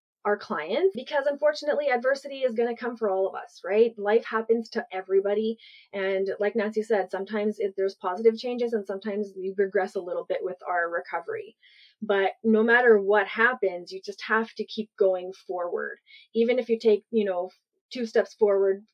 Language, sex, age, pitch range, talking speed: English, female, 30-49, 195-235 Hz, 185 wpm